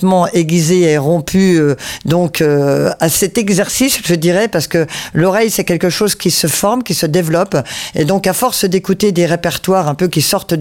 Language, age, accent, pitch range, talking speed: French, 50-69, French, 155-190 Hz, 190 wpm